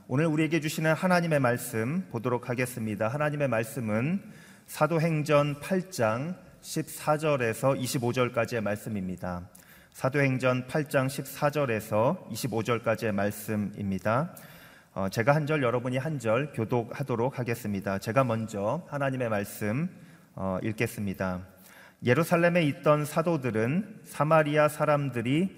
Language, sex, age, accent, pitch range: Korean, male, 40-59, native, 115-150 Hz